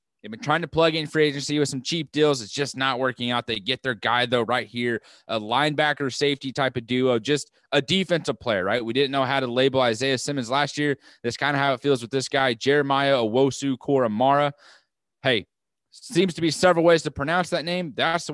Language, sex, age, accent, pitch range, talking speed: English, male, 20-39, American, 120-155 Hz, 225 wpm